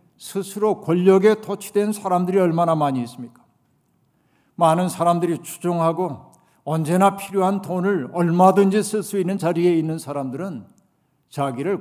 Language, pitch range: Korean, 140-185 Hz